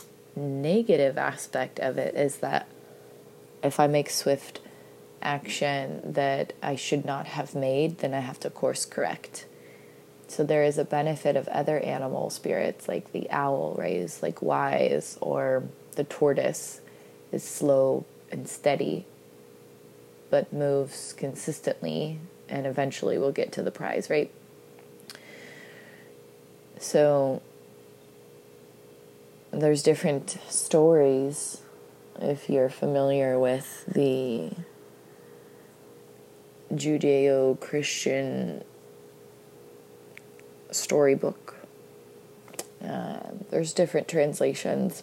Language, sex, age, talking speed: English, female, 20-39, 95 wpm